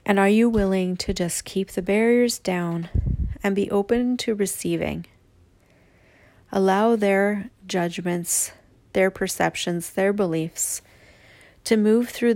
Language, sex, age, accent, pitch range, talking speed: English, female, 40-59, American, 150-200 Hz, 120 wpm